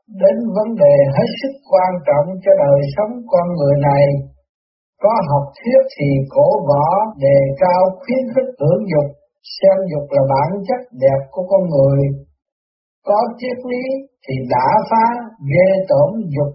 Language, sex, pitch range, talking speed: Vietnamese, male, 145-235 Hz, 155 wpm